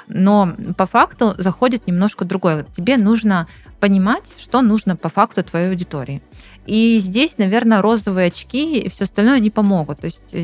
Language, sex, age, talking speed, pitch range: Russian, female, 20-39, 155 wpm, 180-230 Hz